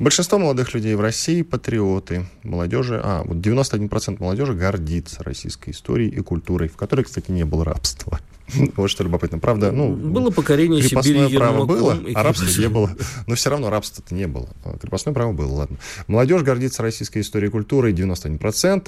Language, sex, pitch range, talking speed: Russian, male, 85-120 Hz, 165 wpm